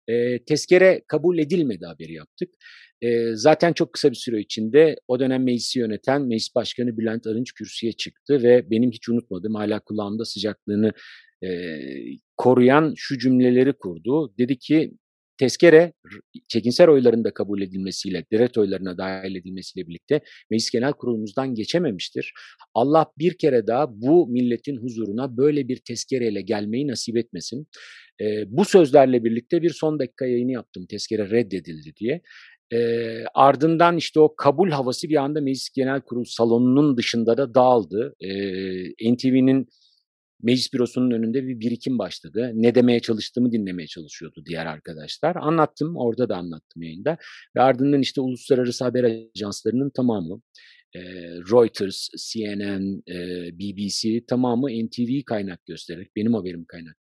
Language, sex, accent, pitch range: Turkish, male, native, 105-140 Hz